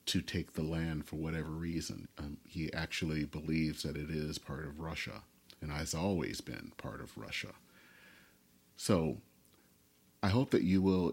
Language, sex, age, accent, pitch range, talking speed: English, male, 40-59, American, 75-95 Hz, 160 wpm